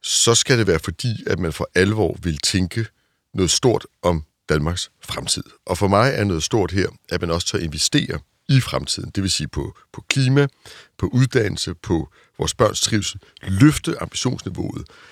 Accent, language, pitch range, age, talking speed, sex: native, Danish, 90-120 Hz, 60-79, 180 wpm, male